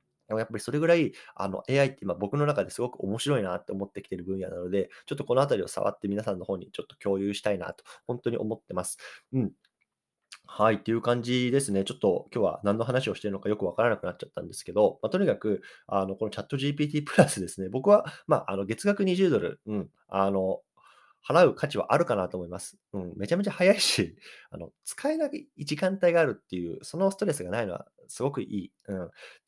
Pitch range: 100-160 Hz